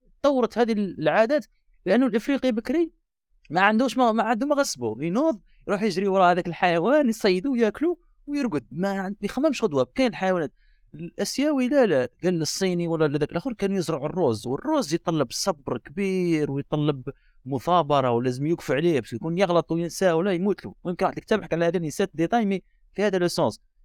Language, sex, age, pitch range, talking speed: Arabic, male, 30-49, 130-190 Hz, 165 wpm